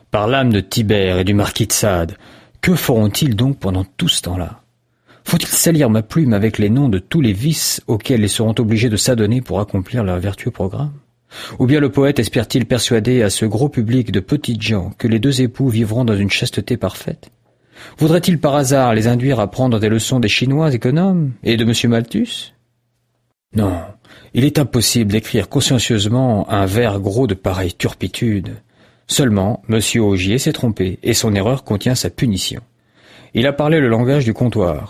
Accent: French